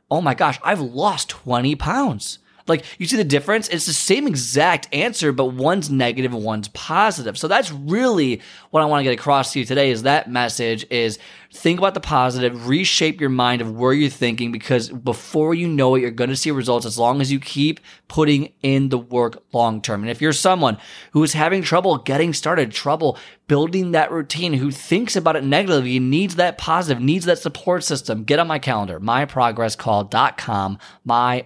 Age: 20-39